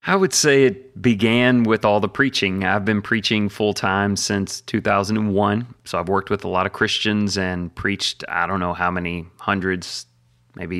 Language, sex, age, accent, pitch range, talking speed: English, male, 30-49, American, 95-125 Hz, 180 wpm